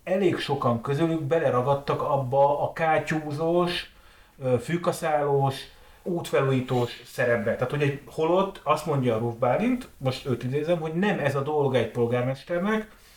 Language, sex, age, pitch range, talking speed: Hungarian, male, 30-49, 125-155 Hz, 130 wpm